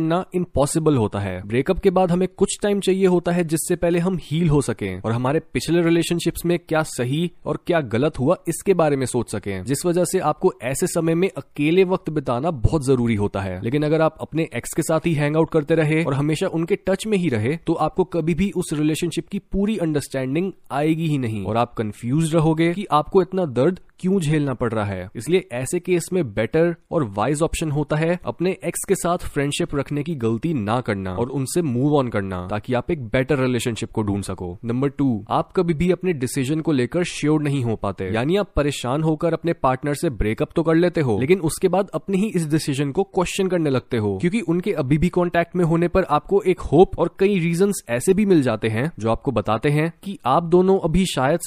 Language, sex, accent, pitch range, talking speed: Hindi, male, native, 130-175 Hz, 220 wpm